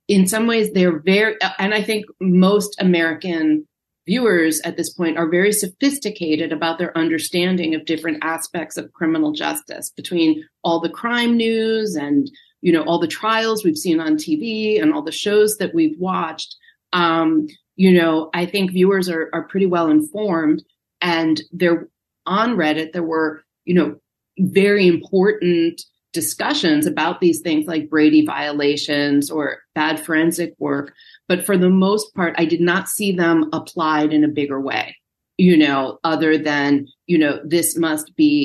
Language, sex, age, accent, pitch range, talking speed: English, female, 30-49, American, 155-200 Hz, 160 wpm